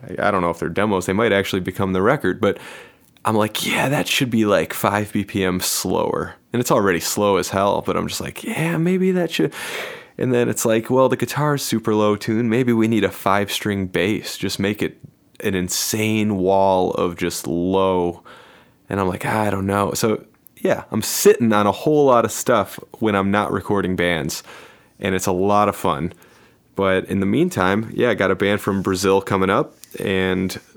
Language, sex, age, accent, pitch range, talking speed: English, male, 20-39, American, 90-105 Hz, 205 wpm